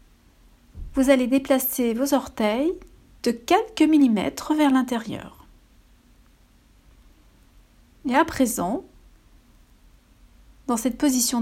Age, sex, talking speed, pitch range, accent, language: 60-79, female, 85 wpm, 215-280 Hz, French, French